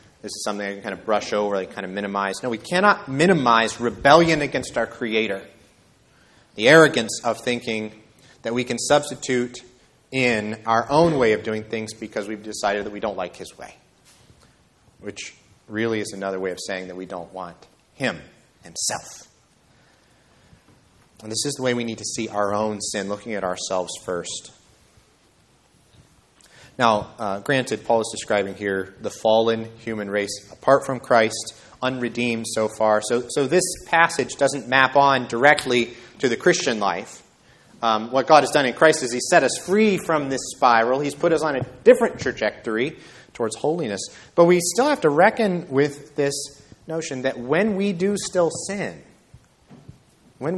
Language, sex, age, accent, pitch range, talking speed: English, male, 30-49, American, 110-150 Hz, 170 wpm